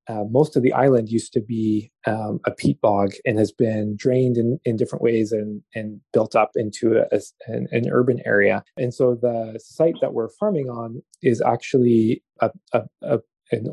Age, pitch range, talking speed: 20-39, 115-135 Hz, 195 wpm